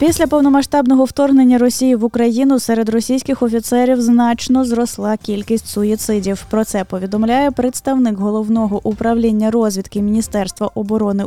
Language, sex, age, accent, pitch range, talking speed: Ukrainian, female, 10-29, native, 205-255 Hz, 115 wpm